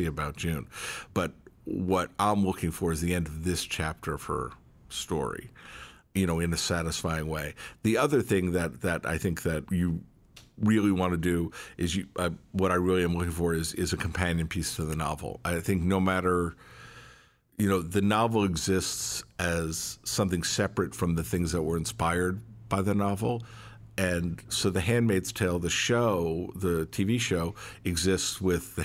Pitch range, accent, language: 85-100 Hz, American, English